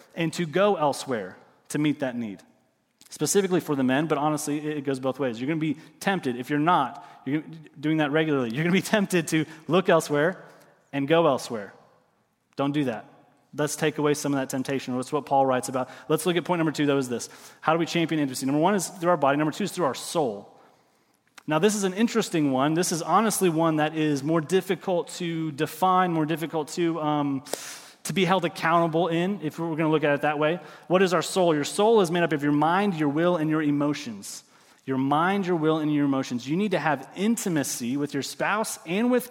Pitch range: 145-175 Hz